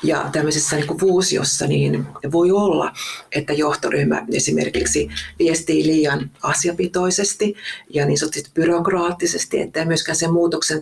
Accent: native